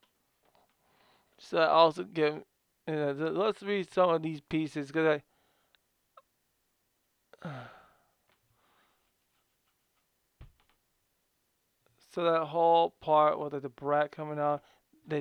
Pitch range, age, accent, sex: 150-170 Hz, 20-39, American, male